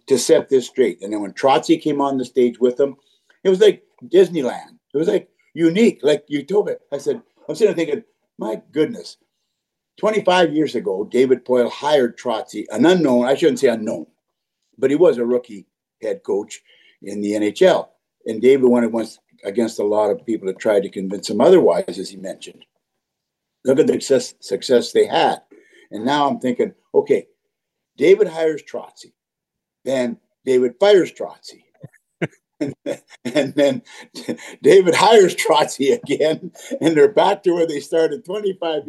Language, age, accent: English, 60-79, American